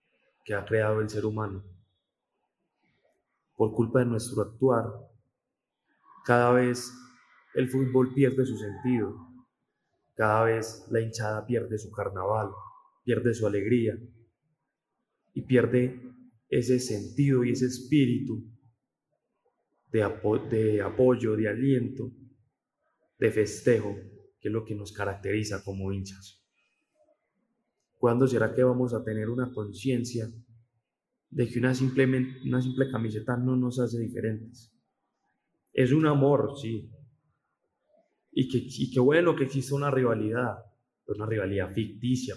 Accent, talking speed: Colombian, 120 wpm